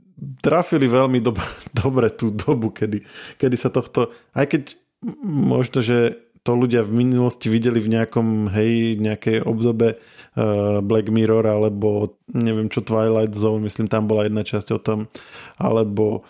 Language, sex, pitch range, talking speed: Slovak, male, 110-125 Hz, 145 wpm